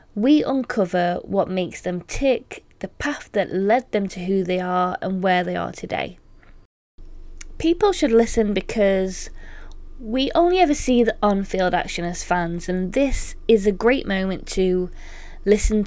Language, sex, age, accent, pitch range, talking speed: English, female, 20-39, British, 185-235 Hz, 155 wpm